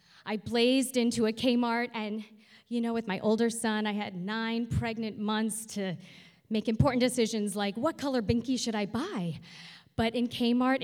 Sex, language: female, English